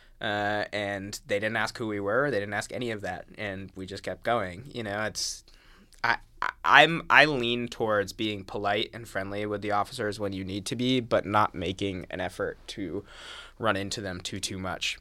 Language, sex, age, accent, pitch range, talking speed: English, male, 20-39, American, 95-110 Hz, 210 wpm